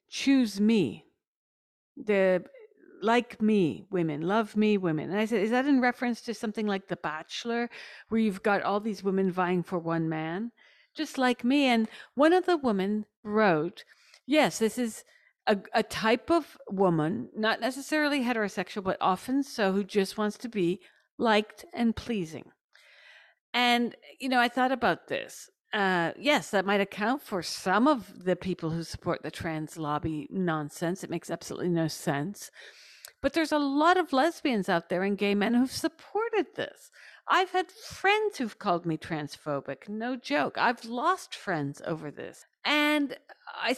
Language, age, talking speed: English, 50-69, 165 wpm